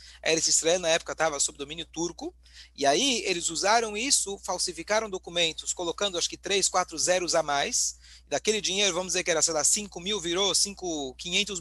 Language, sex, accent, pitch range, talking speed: Portuguese, male, Brazilian, 140-205 Hz, 175 wpm